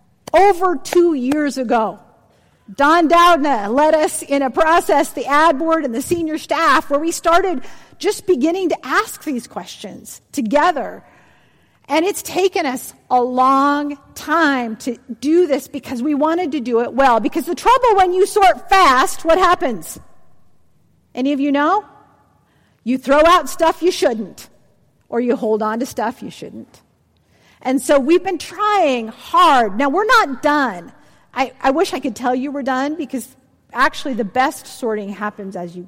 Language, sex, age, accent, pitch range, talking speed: English, female, 50-69, American, 255-340 Hz, 165 wpm